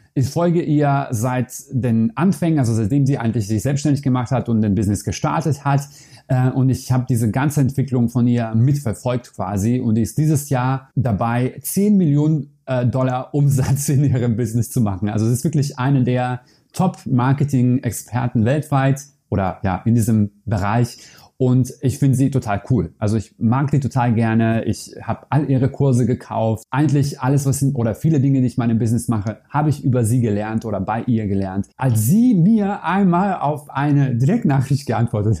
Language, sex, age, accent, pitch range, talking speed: German, male, 30-49, German, 115-140 Hz, 175 wpm